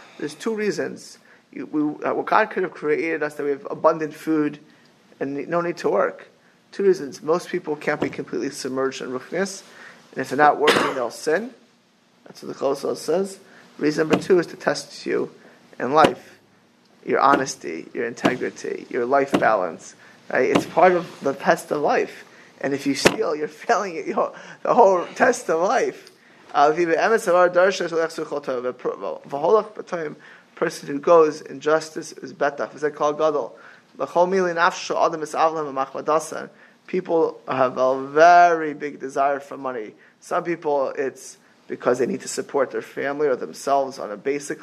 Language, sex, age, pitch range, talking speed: English, male, 20-39, 145-185 Hz, 140 wpm